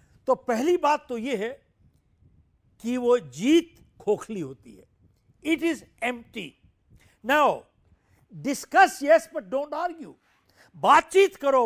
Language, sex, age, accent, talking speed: Hindi, male, 60-79, native, 125 wpm